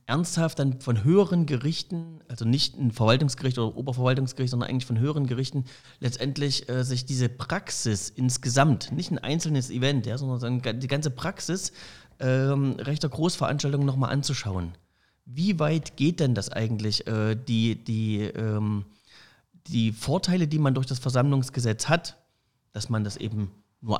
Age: 30-49